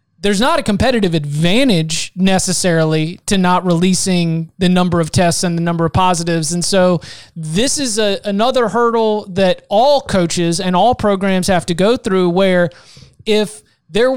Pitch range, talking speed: 180-215 Hz, 160 wpm